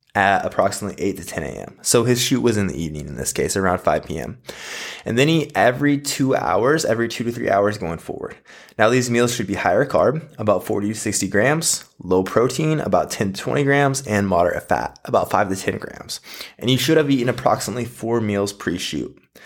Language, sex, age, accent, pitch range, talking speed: English, male, 20-39, American, 100-130 Hz, 210 wpm